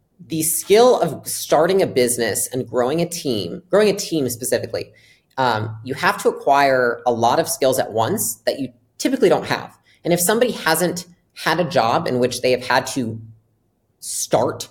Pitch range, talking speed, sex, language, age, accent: 120-165 Hz, 180 wpm, female, English, 30-49, American